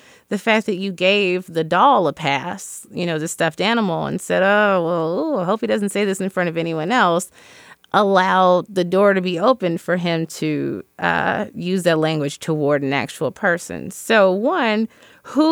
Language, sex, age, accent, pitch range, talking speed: English, female, 30-49, American, 155-200 Hz, 195 wpm